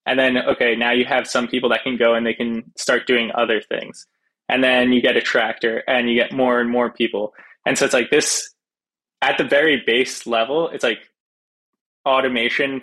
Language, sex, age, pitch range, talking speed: English, male, 20-39, 115-130 Hz, 205 wpm